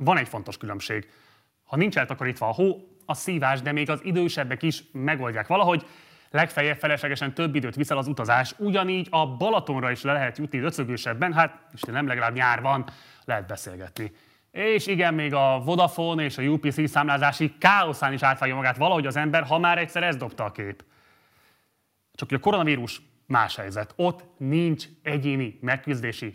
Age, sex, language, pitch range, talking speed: 30-49, male, Hungarian, 130-165 Hz, 170 wpm